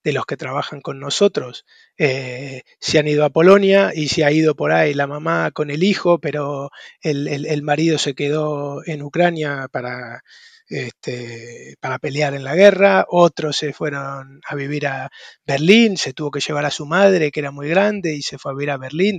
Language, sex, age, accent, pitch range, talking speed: Spanish, male, 20-39, Argentinian, 145-190 Hz, 200 wpm